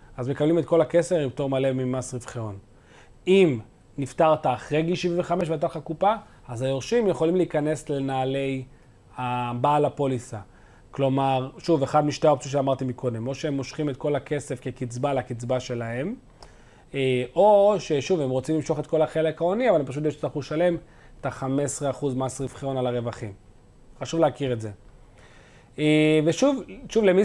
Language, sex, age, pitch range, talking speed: Hebrew, male, 30-49, 125-160 Hz, 150 wpm